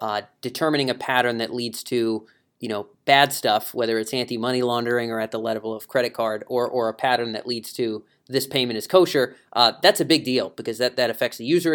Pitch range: 120-155 Hz